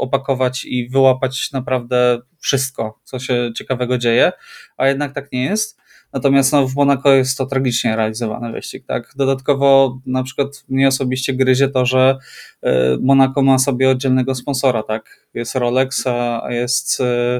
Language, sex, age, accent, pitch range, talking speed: Polish, male, 20-39, native, 125-135 Hz, 145 wpm